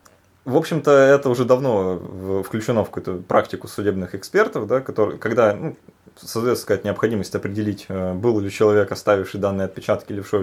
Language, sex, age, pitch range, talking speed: Russian, male, 20-39, 95-130 Hz, 145 wpm